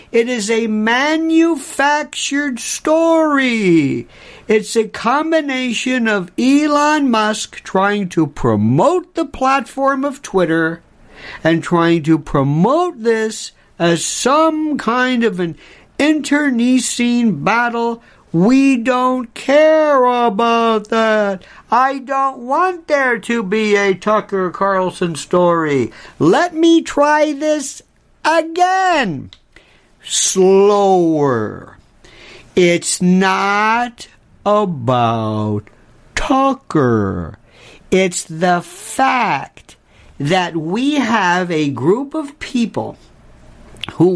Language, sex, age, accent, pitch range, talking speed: English, male, 60-79, American, 175-270 Hz, 90 wpm